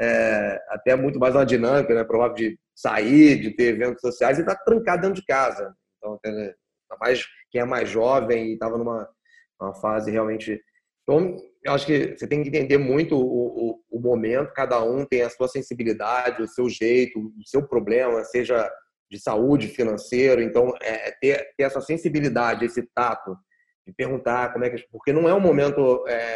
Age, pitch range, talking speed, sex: 30-49, 110-135 Hz, 185 wpm, male